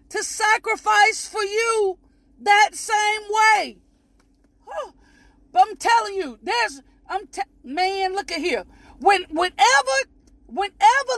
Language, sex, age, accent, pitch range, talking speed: English, female, 40-59, American, 345-440 Hz, 115 wpm